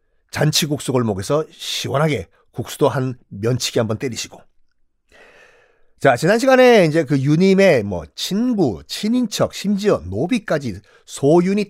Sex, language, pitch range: male, Korean, 130-200 Hz